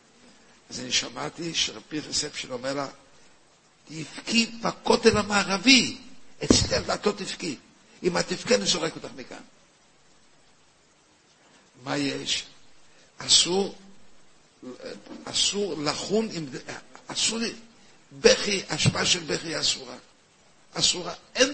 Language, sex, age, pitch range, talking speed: Hebrew, male, 60-79, 150-200 Hz, 90 wpm